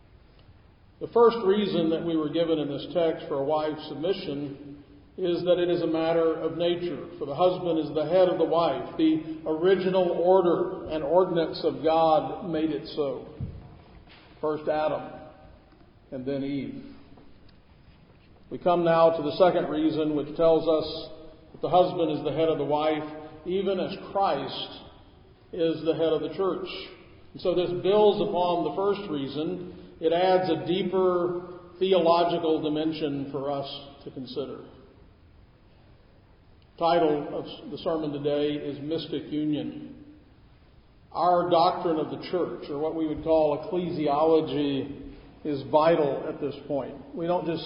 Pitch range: 150-175 Hz